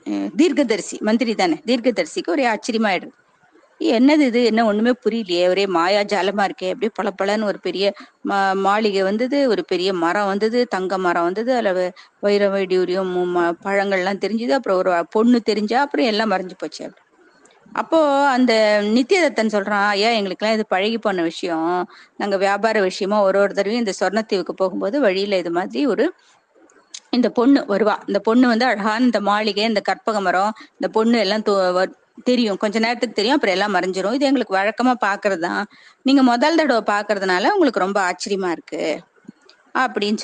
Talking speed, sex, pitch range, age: 155 wpm, female, 195-250 Hz, 20-39